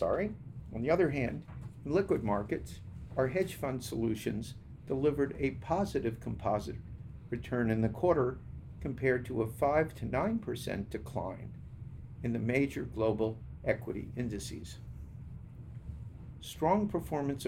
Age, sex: 50-69, male